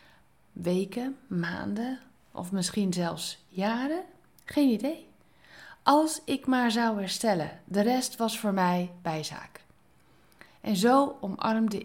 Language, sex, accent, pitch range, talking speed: Dutch, female, Dutch, 180-245 Hz, 110 wpm